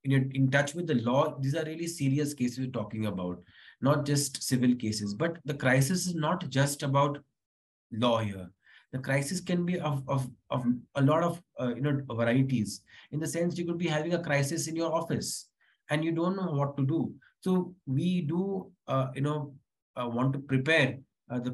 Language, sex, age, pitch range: English, male, 20-39, 130-165 Hz